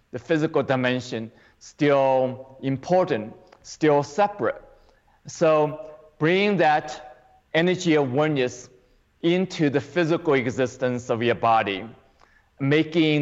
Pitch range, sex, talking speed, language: 125-150 Hz, male, 95 wpm, English